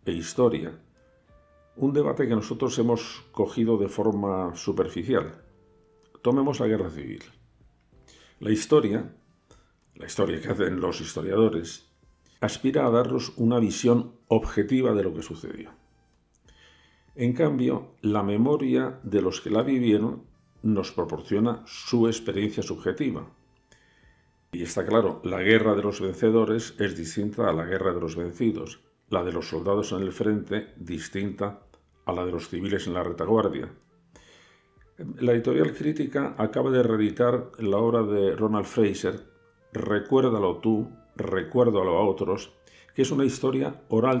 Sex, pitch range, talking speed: male, 90-115 Hz, 135 wpm